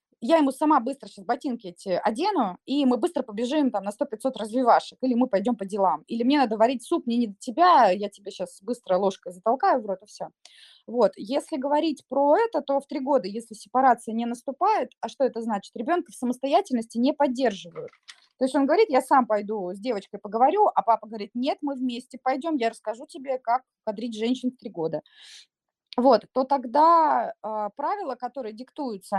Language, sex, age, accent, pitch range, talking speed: Russian, female, 20-39, native, 215-280 Hz, 195 wpm